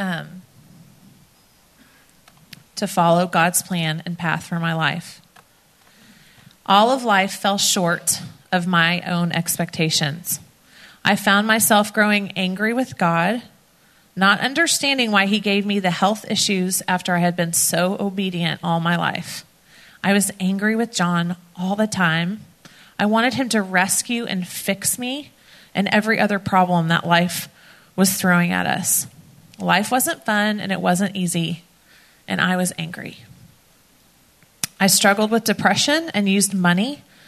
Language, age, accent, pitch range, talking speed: English, 30-49, American, 175-205 Hz, 140 wpm